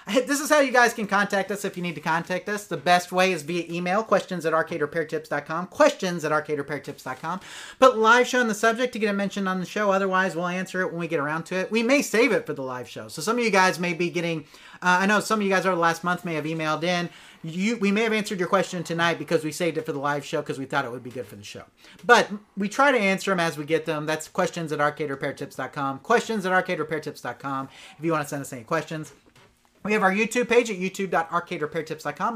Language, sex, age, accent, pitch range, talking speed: English, male, 30-49, American, 155-200 Hz, 260 wpm